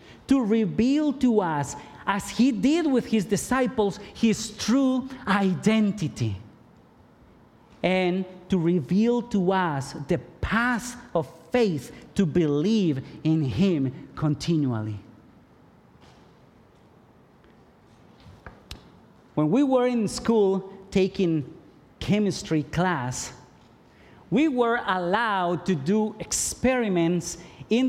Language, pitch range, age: English, 170-235 Hz, 50-69